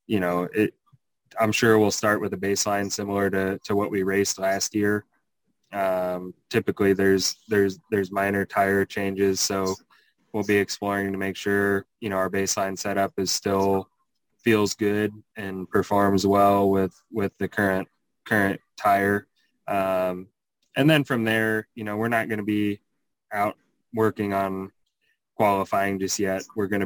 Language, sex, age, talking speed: English, male, 20-39, 160 wpm